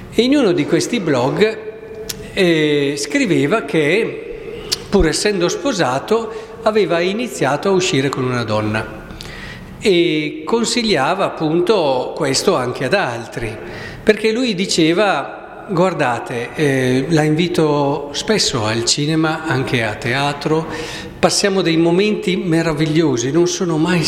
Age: 50-69